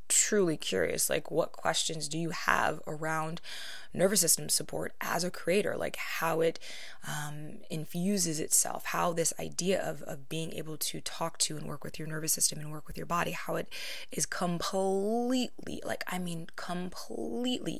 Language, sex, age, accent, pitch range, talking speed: English, female, 20-39, American, 150-175 Hz, 170 wpm